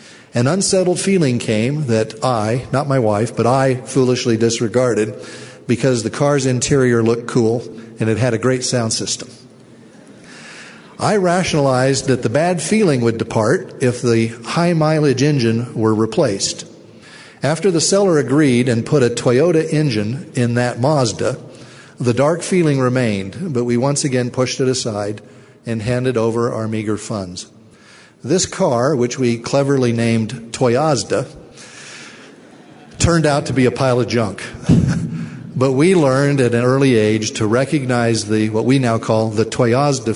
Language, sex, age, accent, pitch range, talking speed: English, male, 50-69, American, 115-140 Hz, 150 wpm